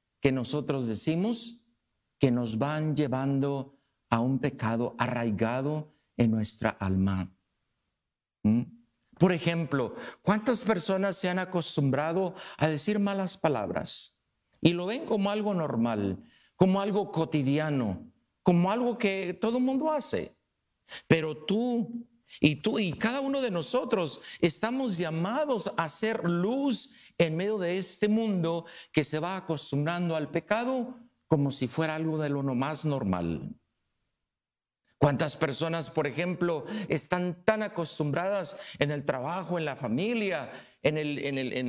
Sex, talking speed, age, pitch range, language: male, 130 wpm, 50-69, 135-200 Hz, English